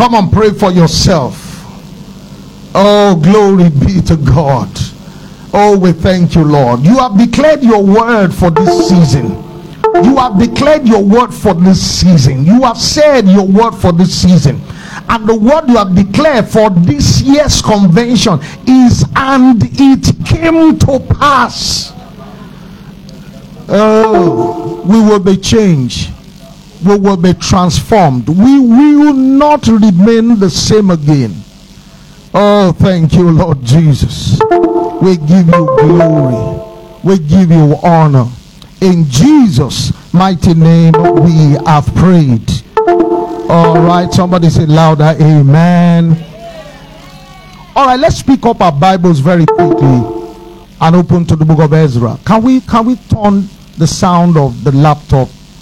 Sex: male